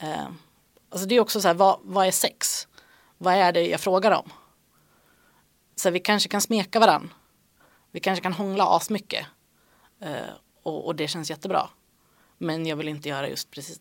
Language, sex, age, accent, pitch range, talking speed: Swedish, female, 30-49, native, 160-205 Hz, 180 wpm